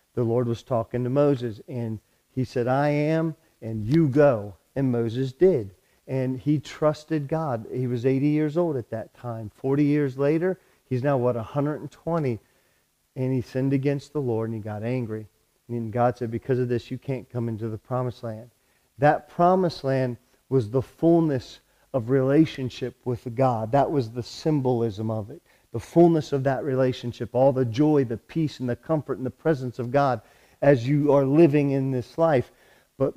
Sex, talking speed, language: male, 185 wpm, Italian